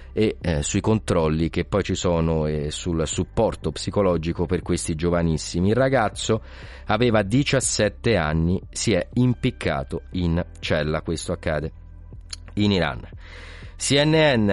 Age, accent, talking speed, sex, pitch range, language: 30-49, native, 125 wpm, male, 85-115 Hz, Italian